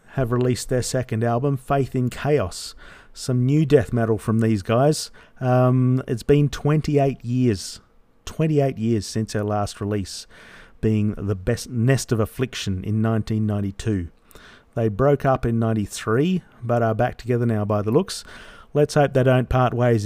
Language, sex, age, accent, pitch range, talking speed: English, male, 40-59, Australian, 105-125 Hz, 160 wpm